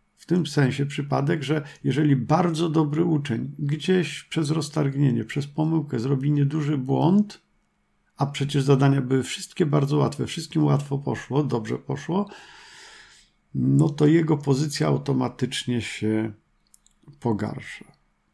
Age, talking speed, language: 50-69, 120 wpm, Polish